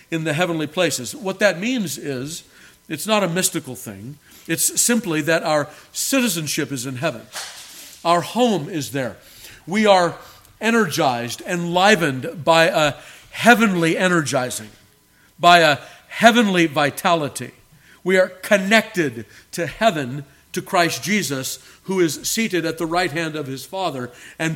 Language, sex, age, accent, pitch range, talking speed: English, male, 50-69, American, 140-185 Hz, 135 wpm